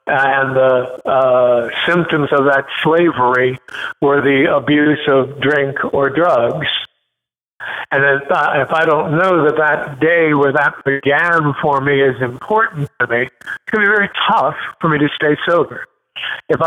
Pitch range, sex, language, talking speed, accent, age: 140-165 Hz, male, English, 160 wpm, American, 50-69